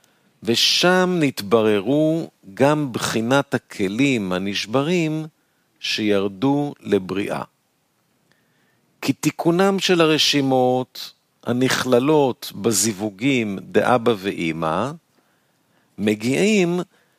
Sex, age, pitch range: male, 50-69, 110-155 Hz